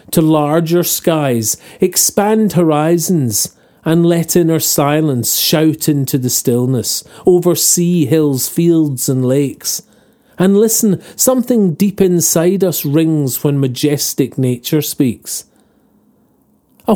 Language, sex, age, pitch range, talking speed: English, male, 40-59, 145-195 Hz, 110 wpm